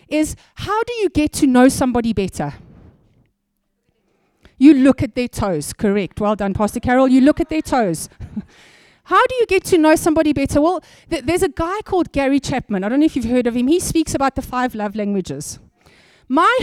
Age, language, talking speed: 30-49, English, 200 wpm